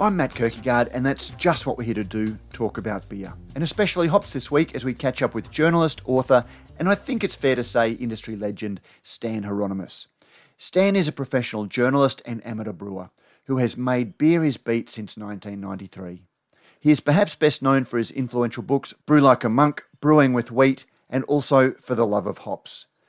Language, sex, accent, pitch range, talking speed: English, male, Australian, 110-145 Hz, 200 wpm